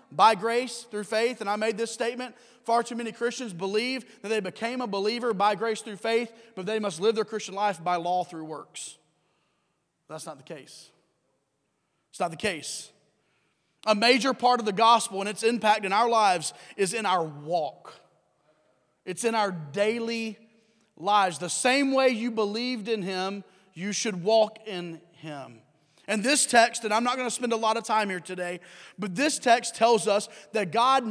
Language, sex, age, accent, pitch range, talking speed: English, male, 30-49, American, 190-245 Hz, 185 wpm